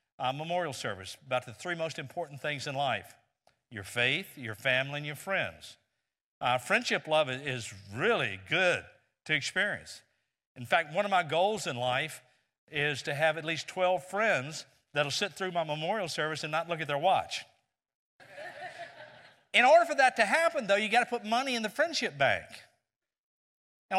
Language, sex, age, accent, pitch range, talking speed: English, male, 50-69, American, 130-215 Hz, 175 wpm